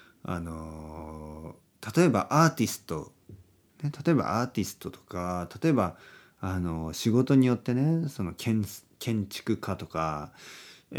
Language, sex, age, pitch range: Japanese, male, 40-59, 90-150 Hz